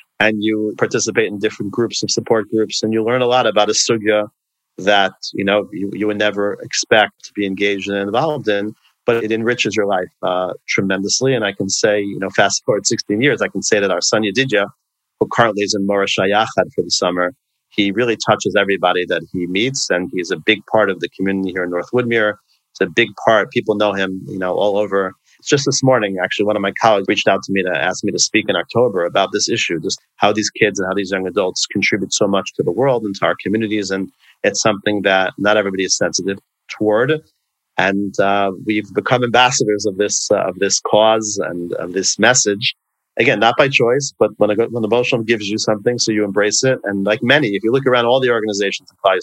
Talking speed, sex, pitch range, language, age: 225 wpm, male, 100-110 Hz, English, 40-59